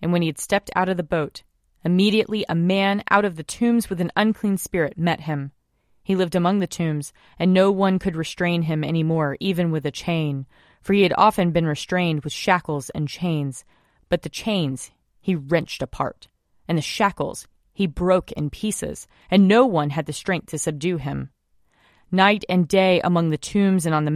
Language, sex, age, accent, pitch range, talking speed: English, female, 30-49, American, 155-195 Hz, 200 wpm